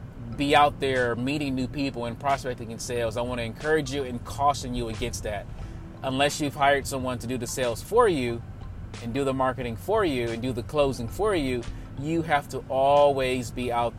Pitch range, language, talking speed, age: 120-145 Hz, English, 205 wpm, 30-49